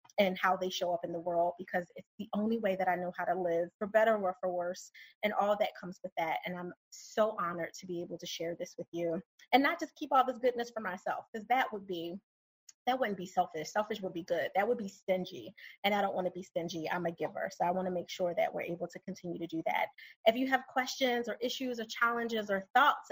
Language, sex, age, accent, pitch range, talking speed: English, female, 30-49, American, 180-260 Hz, 260 wpm